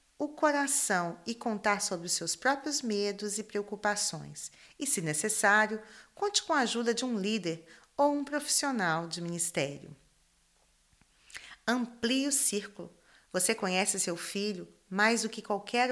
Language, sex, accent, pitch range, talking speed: Portuguese, female, Brazilian, 190-245 Hz, 140 wpm